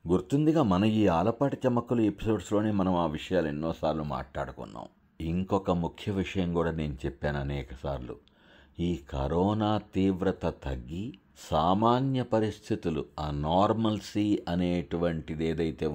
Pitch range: 80-100 Hz